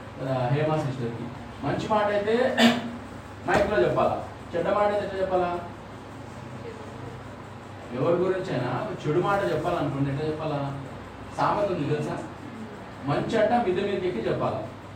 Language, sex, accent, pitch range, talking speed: Telugu, male, native, 120-190 Hz, 110 wpm